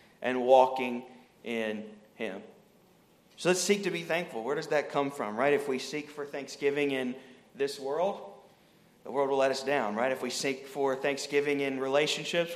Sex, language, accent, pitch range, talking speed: male, English, American, 125-150 Hz, 180 wpm